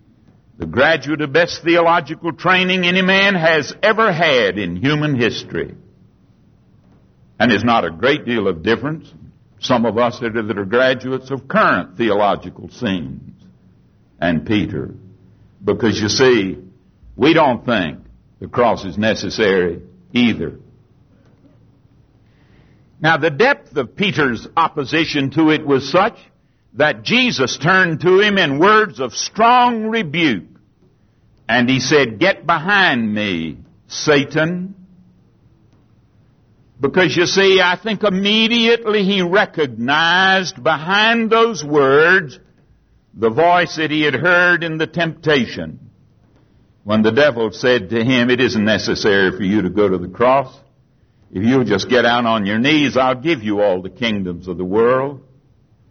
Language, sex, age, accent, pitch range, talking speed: English, male, 60-79, American, 115-170 Hz, 135 wpm